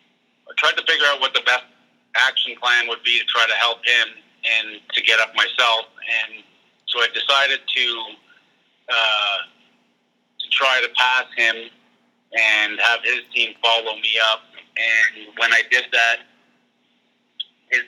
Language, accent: English, American